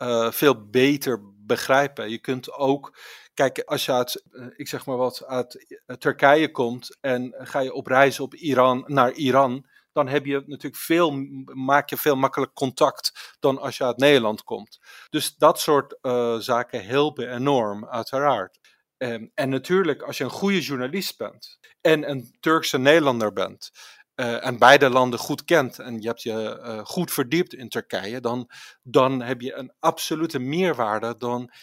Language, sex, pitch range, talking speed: Dutch, male, 125-145 Hz, 165 wpm